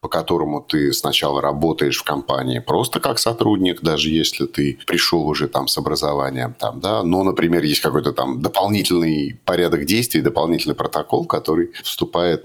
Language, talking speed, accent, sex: Russian, 145 wpm, native, male